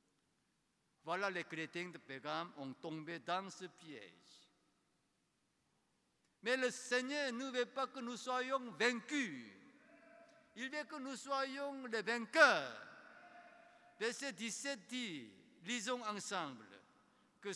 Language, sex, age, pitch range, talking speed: French, male, 60-79, 175-250 Hz, 115 wpm